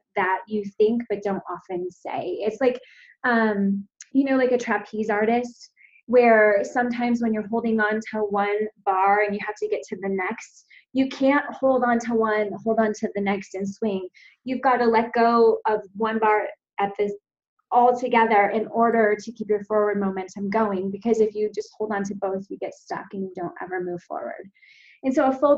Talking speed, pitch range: 200 wpm, 205-240 Hz